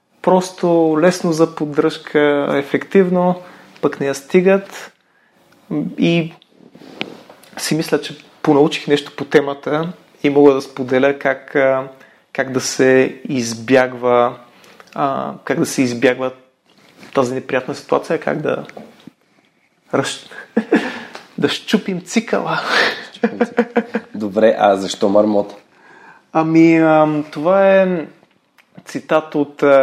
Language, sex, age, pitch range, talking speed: Bulgarian, male, 30-49, 130-160 Hz, 95 wpm